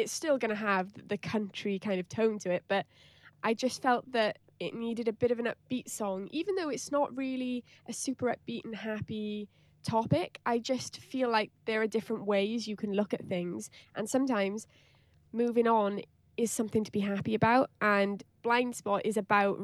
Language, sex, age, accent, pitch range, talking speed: English, female, 10-29, British, 190-230 Hz, 195 wpm